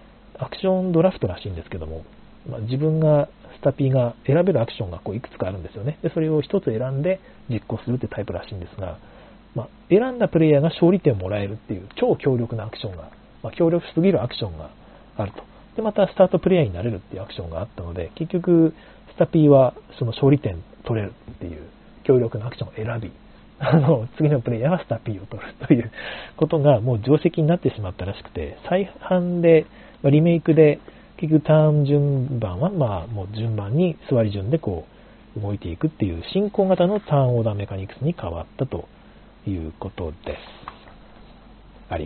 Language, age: Japanese, 40-59